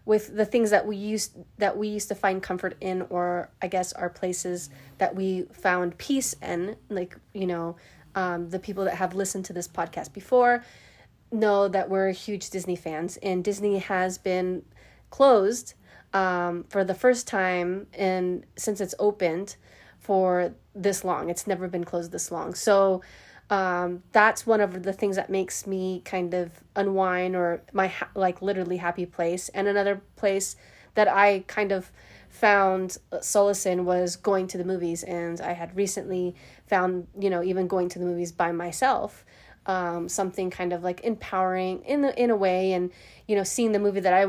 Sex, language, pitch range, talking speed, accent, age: female, English, 180-200 Hz, 180 wpm, American, 20-39